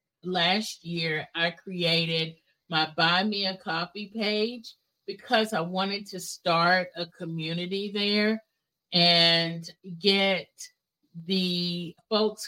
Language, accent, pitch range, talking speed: English, American, 160-185 Hz, 105 wpm